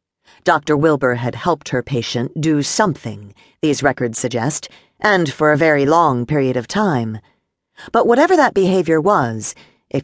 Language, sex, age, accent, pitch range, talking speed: English, female, 50-69, American, 120-170 Hz, 150 wpm